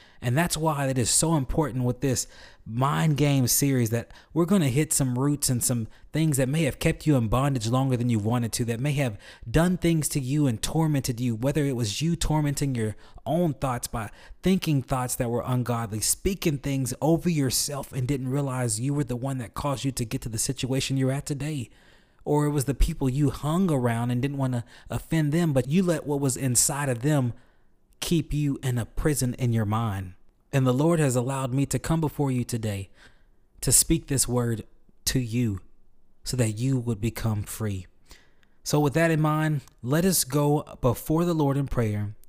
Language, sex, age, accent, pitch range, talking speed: English, male, 20-39, American, 120-150 Hz, 205 wpm